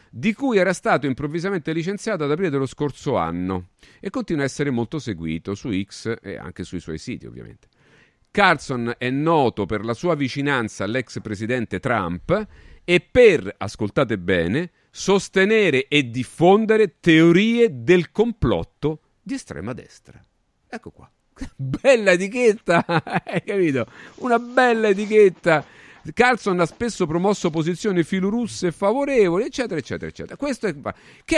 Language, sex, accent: Italian, male, native